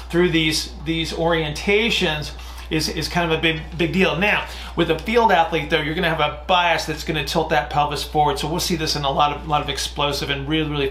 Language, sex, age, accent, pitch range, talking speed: English, male, 40-59, American, 150-180 Hz, 235 wpm